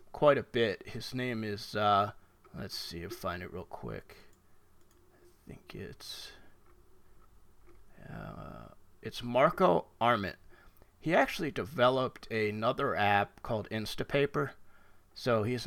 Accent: American